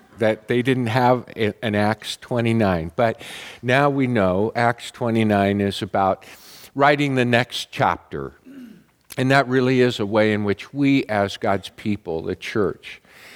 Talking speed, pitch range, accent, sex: 150 wpm, 105-135 Hz, American, male